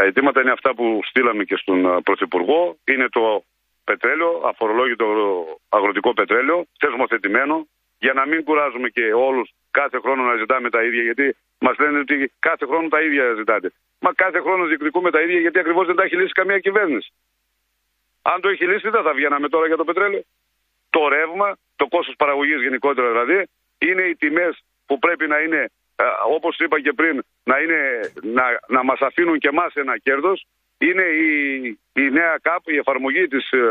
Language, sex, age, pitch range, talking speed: Greek, male, 50-69, 140-175 Hz, 175 wpm